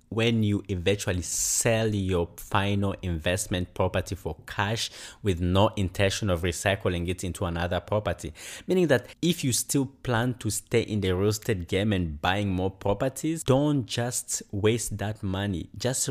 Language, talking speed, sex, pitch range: English, 155 wpm, male, 95-120 Hz